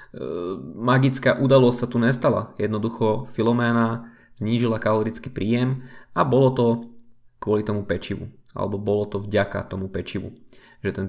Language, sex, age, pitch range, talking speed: Slovak, male, 20-39, 110-130 Hz, 130 wpm